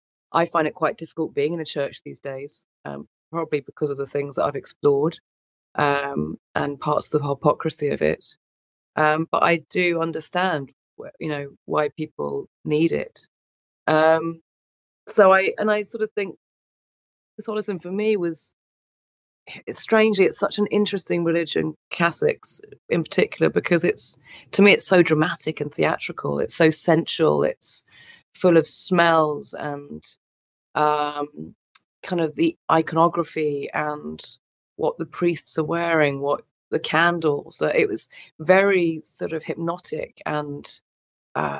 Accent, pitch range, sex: British, 145-175 Hz, female